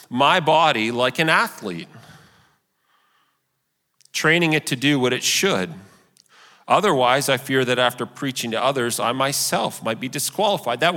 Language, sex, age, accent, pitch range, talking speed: English, male, 40-59, American, 135-200 Hz, 140 wpm